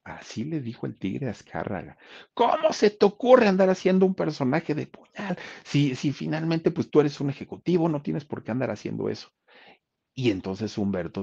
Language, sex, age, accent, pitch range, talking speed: Spanish, male, 40-59, Mexican, 95-150 Hz, 180 wpm